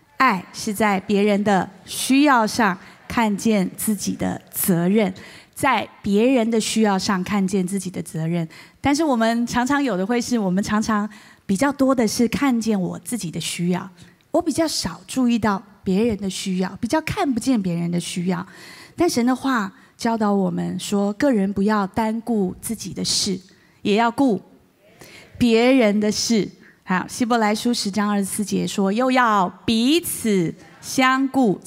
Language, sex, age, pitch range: Chinese, female, 20-39, 190-240 Hz